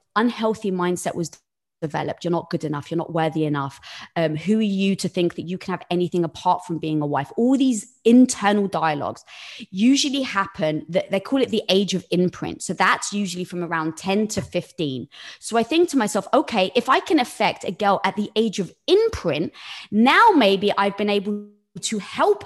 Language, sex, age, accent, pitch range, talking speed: English, female, 20-39, British, 185-265 Hz, 200 wpm